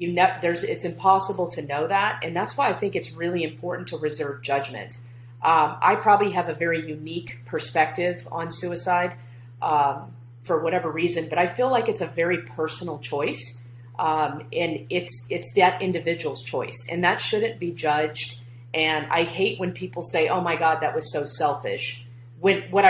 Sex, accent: female, American